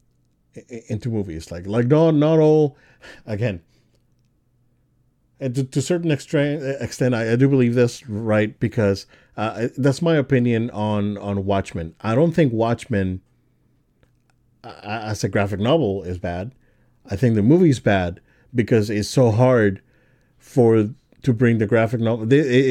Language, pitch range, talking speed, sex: English, 105-130 Hz, 155 wpm, male